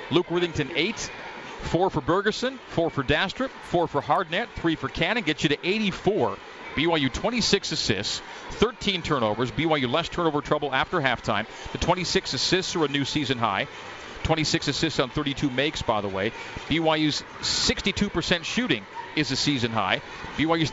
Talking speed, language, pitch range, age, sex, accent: 155 wpm, English, 135-175 Hz, 40-59, male, American